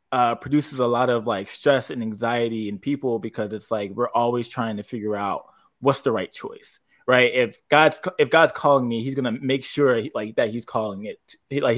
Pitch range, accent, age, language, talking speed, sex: 115-165 Hz, American, 20-39, English, 210 wpm, male